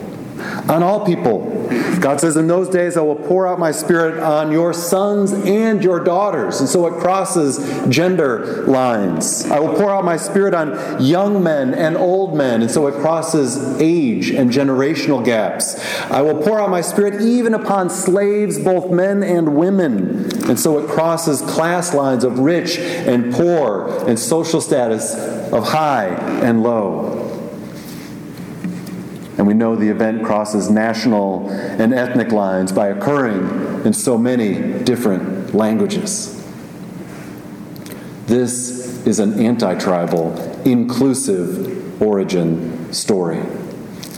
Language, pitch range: English, 120-195 Hz